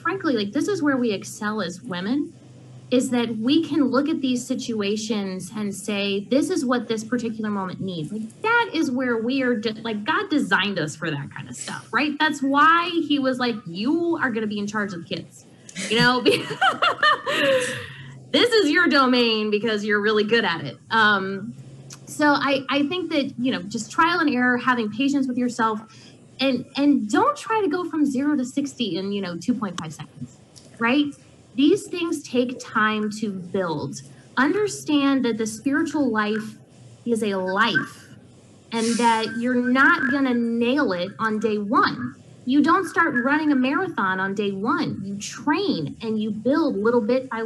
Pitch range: 210-280 Hz